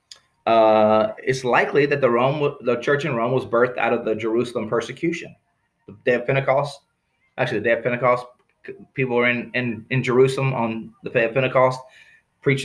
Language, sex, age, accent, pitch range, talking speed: English, male, 20-39, American, 125-155 Hz, 180 wpm